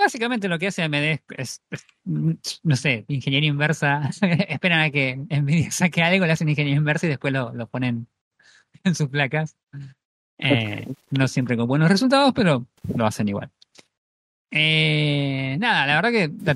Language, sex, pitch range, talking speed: Spanish, male, 120-150 Hz, 165 wpm